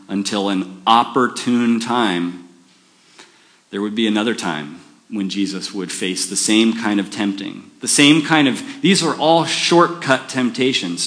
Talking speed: 145 wpm